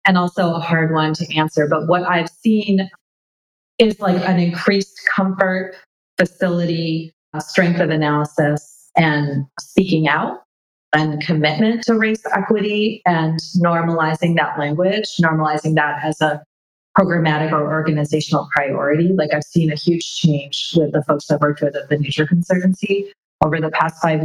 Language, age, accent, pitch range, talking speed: English, 30-49, American, 150-180 Hz, 145 wpm